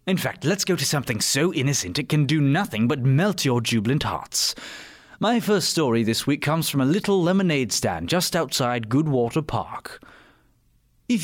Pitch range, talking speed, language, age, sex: 125-180 Hz, 175 wpm, English, 30-49, male